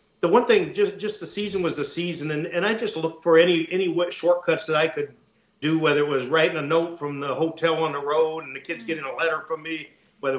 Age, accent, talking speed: 50-69, American, 255 wpm